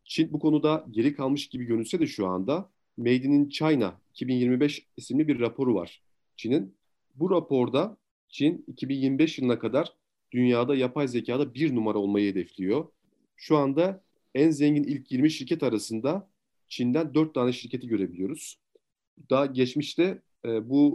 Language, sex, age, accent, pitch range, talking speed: Turkish, male, 40-59, native, 120-150 Hz, 140 wpm